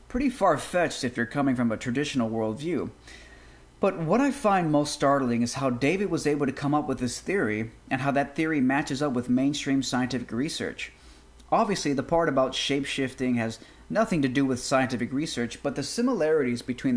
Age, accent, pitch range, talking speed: 30-49, American, 120-155 Hz, 185 wpm